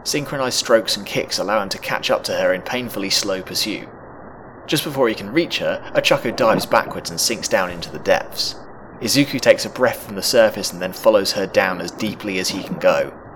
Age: 30-49